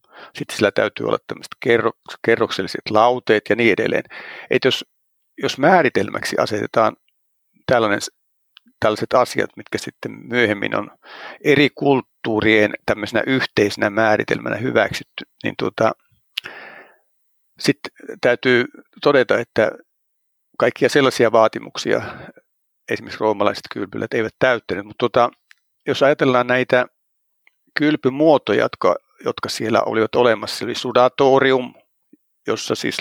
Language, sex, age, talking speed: Finnish, male, 50-69, 100 wpm